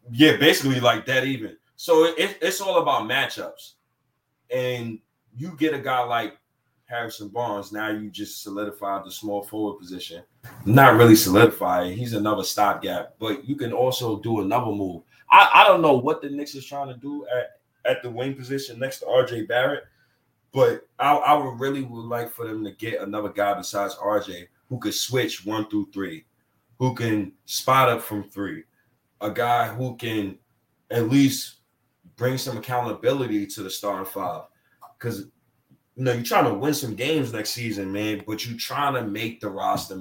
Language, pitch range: English, 105-130 Hz